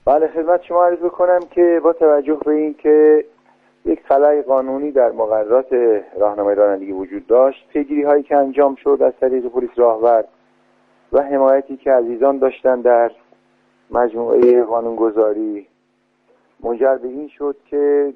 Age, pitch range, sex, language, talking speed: 50-69, 110-145 Hz, male, Persian, 140 wpm